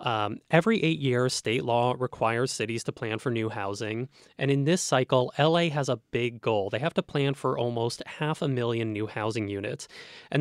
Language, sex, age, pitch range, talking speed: English, male, 20-39, 115-145 Hz, 200 wpm